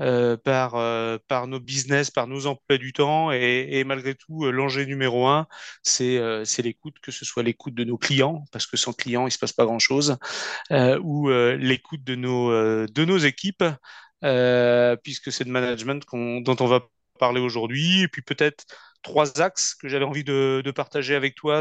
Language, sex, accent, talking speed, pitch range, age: French, male, French, 205 wpm, 125-150 Hz, 30-49